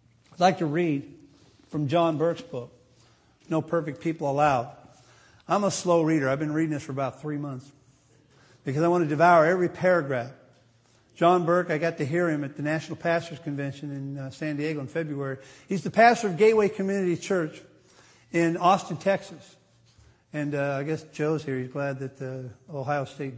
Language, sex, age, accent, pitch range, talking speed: English, male, 50-69, American, 140-185 Hz, 180 wpm